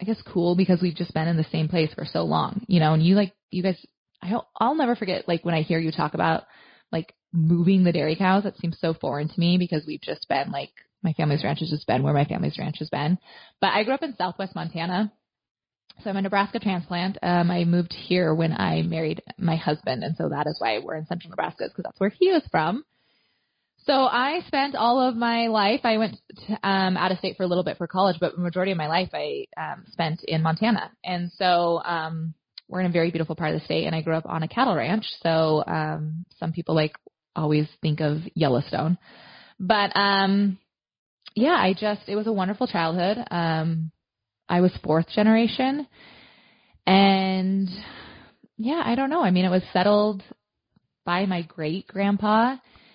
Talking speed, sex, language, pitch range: 210 wpm, female, English, 165-205 Hz